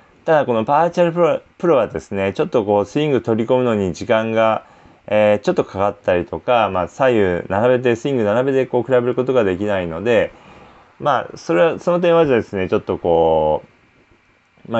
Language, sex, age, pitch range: Japanese, male, 20-39, 95-135 Hz